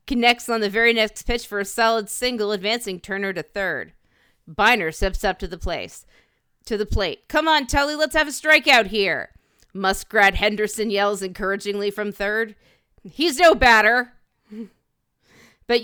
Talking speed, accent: 155 wpm, American